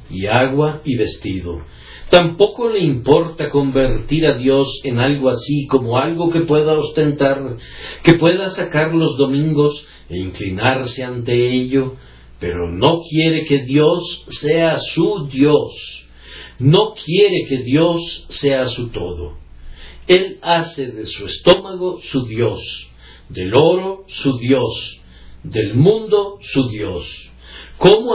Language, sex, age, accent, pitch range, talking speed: Spanish, male, 60-79, Mexican, 105-155 Hz, 125 wpm